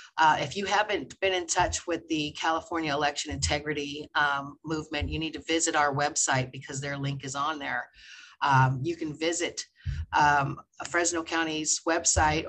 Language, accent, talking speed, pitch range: English, American, 170 wpm, 145-170 Hz